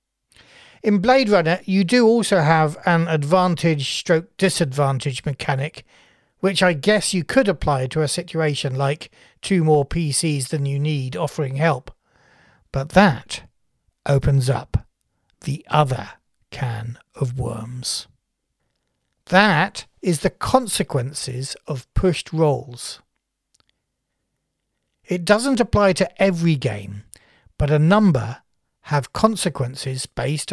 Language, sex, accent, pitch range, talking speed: English, male, British, 135-185 Hz, 115 wpm